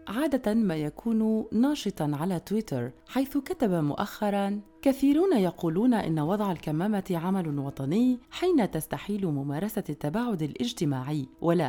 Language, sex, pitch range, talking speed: Arabic, female, 165-235 Hz, 115 wpm